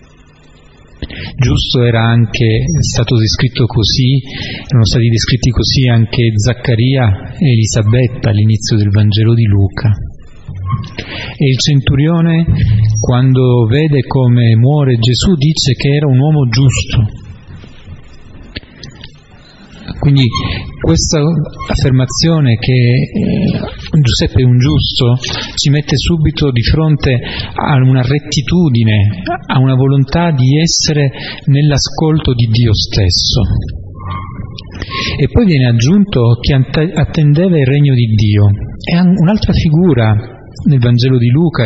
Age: 40-59